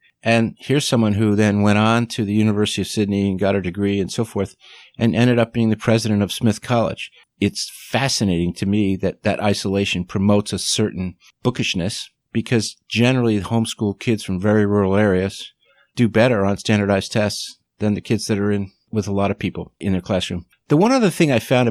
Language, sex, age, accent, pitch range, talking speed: English, male, 50-69, American, 100-120 Hz, 200 wpm